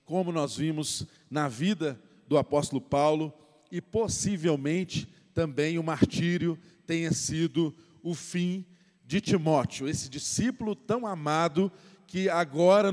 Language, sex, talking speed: Portuguese, male, 115 wpm